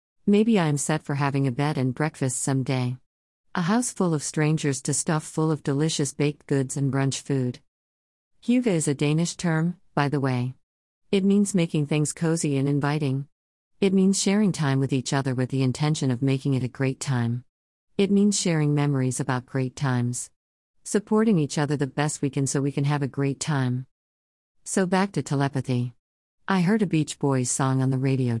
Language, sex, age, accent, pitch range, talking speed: English, female, 50-69, American, 130-160 Hz, 190 wpm